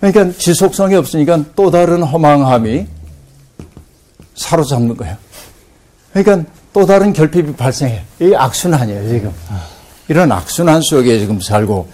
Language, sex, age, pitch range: Korean, male, 60-79, 105-165 Hz